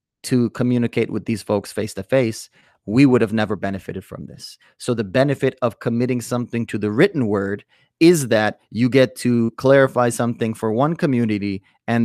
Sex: male